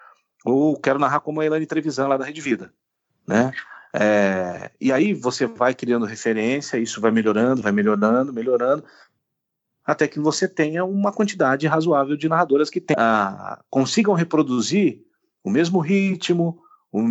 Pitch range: 110-160 Hz